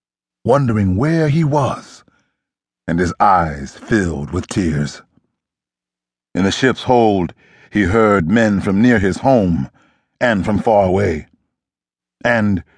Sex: male